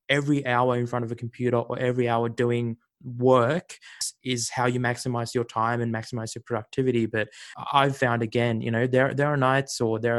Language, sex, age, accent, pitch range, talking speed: English, male, 20-39, Australian, 115-135 Hz, 200 wpm